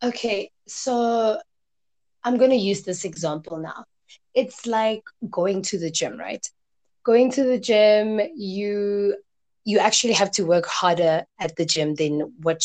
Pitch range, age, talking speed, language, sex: 160-200 Hz, 20-39, 150 wpm, English, female